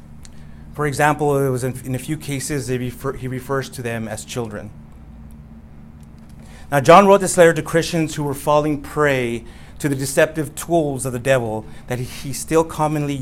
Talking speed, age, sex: 175 wpm, 30-49, male